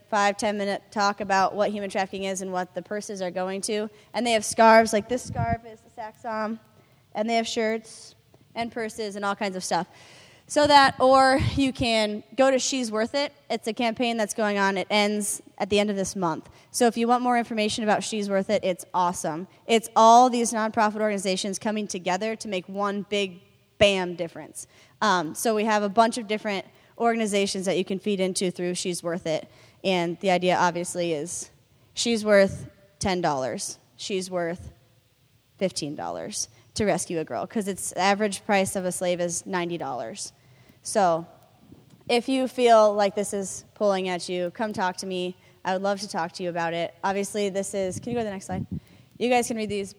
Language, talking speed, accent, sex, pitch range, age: English, 200 wpm, American, female, 180-220 Hz, 20-39